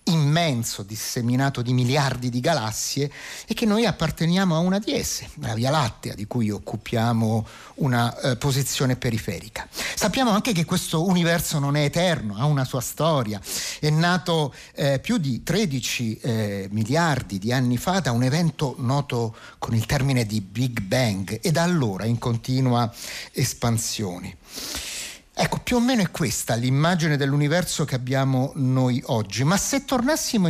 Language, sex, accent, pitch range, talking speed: Italian, male, native, 120-170 Hz, 155 wpm